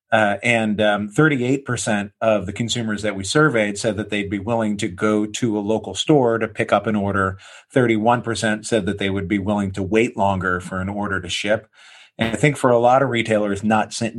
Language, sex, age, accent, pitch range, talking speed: English, male, 40-59, American, 100-115 Hz, 215 wpm